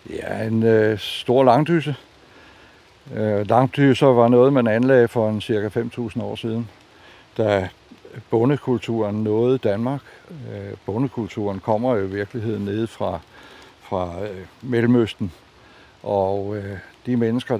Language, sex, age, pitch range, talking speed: Danish, male, 60-79, 105-130 Hz, 125 wpm